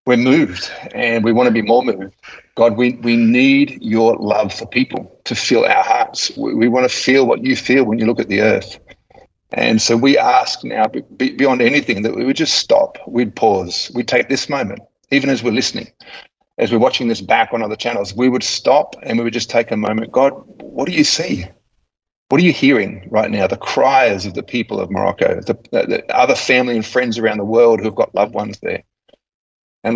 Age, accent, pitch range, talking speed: 40-59, Australian, 110-125 Hz, 220 wpm